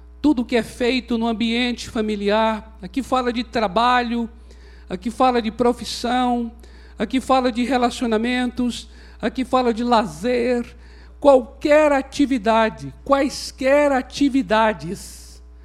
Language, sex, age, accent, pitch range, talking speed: Portuguese, male, 60-79, Brazilian, 190-260 Hz, 105 wpm